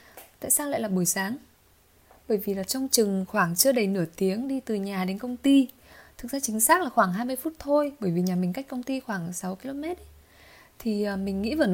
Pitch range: 200-265 Hz